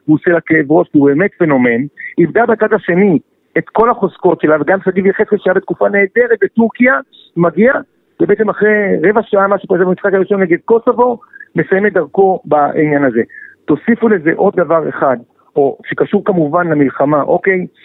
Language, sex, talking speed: Hebrew, male, 160 wpm